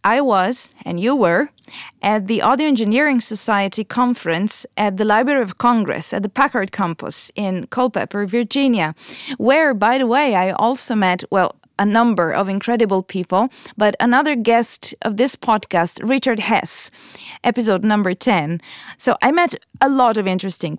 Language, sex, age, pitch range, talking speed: English, female, 30-49, 200-255 Hz, 155 wpm